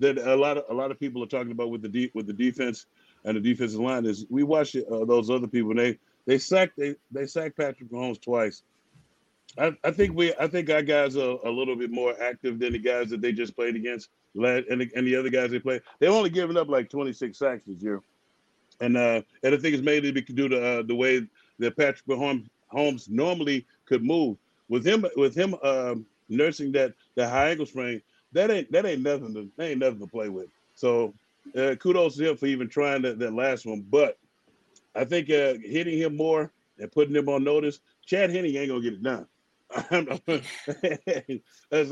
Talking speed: 215 wpm